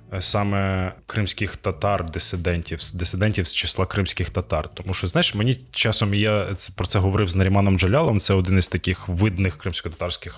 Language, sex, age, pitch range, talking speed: Ukrainian, male, 20-39, 95-110 Hz, 150 wpm